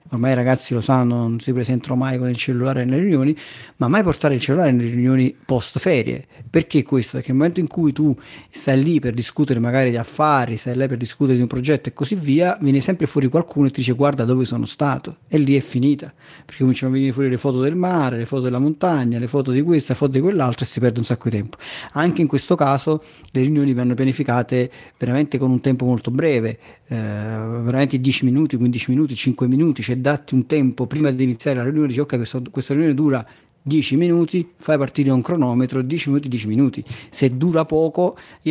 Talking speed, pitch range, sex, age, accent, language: 225 wpm, 125-150 Hz, male, 40-59, native, Italian